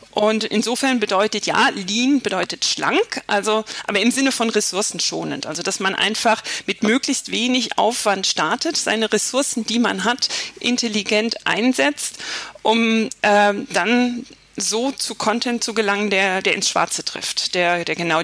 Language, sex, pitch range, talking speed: German, female, 210-250 Hz, 150 wpm